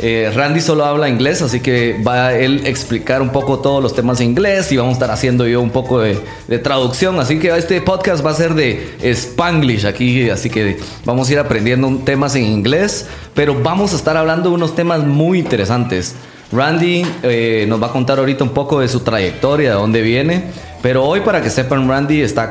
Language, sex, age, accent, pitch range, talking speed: Spanish, male, 30-49, Mexican, 110-140 Hz, 215 wpm